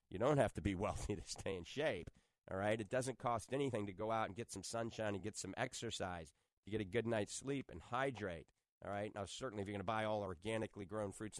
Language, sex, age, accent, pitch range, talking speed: English, male, 40-59, American, 95-115 Hz, 255 wpm